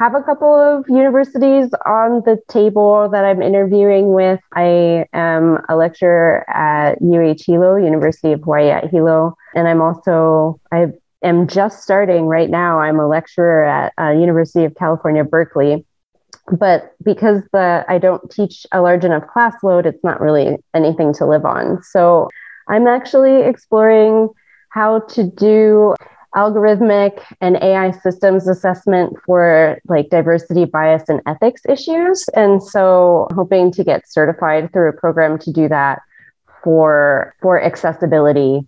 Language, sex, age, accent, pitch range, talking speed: English, female, 20-39, American, 160-200 Hz, 145 wpm